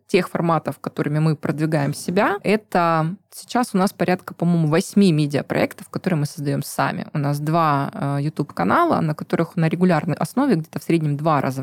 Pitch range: 145-175 Hz